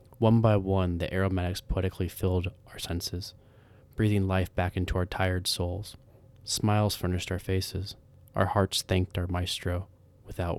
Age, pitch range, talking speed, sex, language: 20-39, 90-110 Hz, 145 wpm, male, English